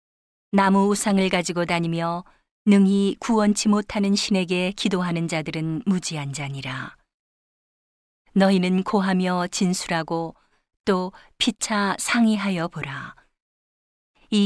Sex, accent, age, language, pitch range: female, native, 40-59, Korean, 170-200 Hz